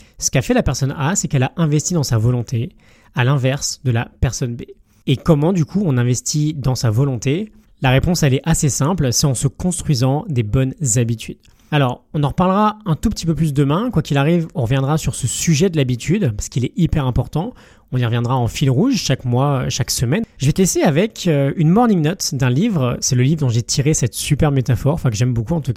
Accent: French